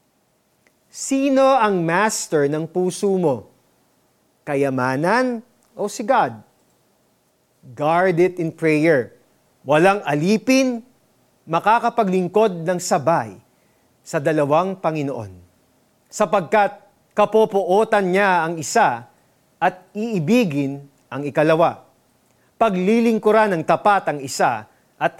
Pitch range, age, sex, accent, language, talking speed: 150-215 Hz, 40-59, male, native, Filipino, 90 wpm